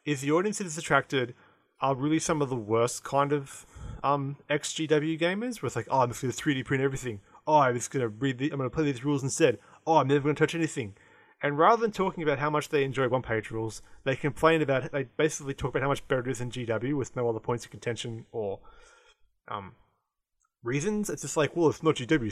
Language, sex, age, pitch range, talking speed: English, male, 20-39, 120-160 Hz, 235 wpm